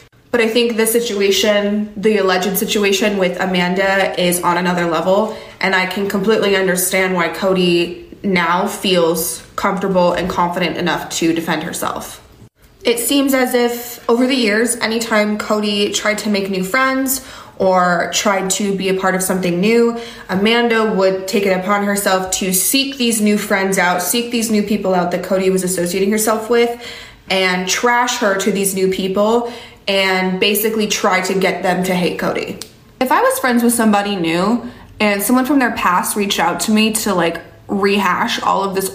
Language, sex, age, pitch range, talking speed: English, female, 20-39, 185-230 Hz, 175 wpm